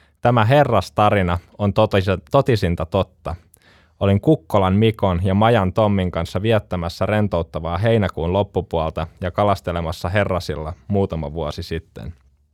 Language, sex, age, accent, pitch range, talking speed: Finnish, male, 10-29, native, 85-105 Hz, 105 wpm